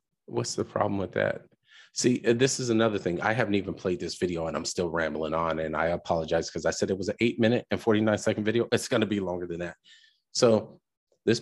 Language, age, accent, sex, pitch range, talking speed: English, 30-49, American, male, 95-125 Hz, 235 wpm